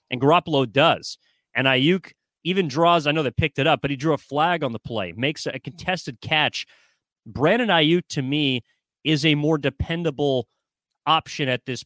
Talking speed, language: 180 wpm, English